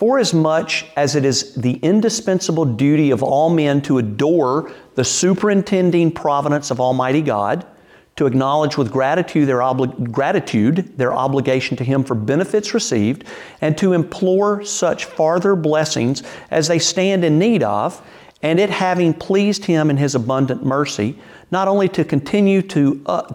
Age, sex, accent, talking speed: 50-69, male, American, 150 wpm